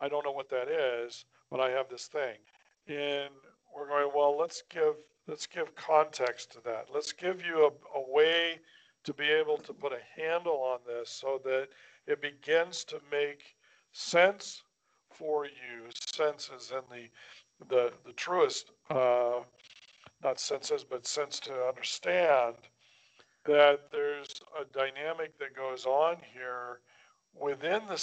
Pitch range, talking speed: 130-165 Hz, 150 wpm